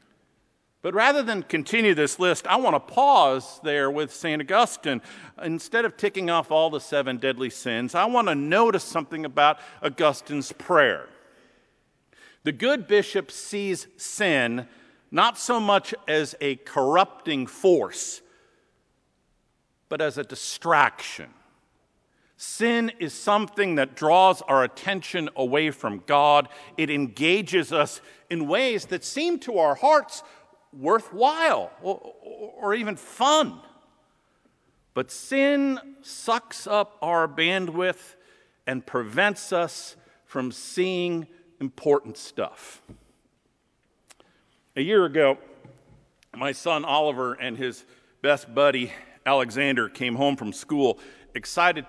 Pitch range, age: 135-205 Hz, 50-69